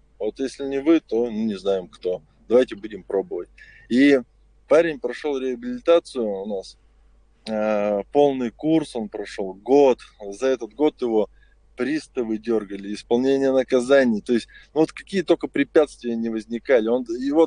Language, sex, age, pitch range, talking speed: Russian, male, 20-39, 105-135 Hz, 145 wpm